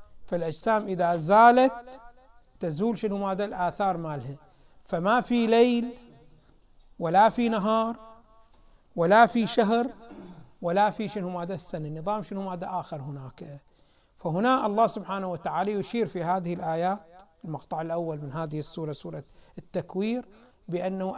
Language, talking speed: Arabic, 120 wpm